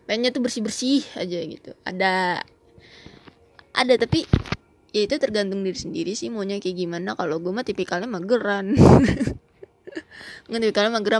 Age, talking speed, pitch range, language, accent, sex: 20-39, 145 wpm, 195-250 Hz, Indonesian, native, female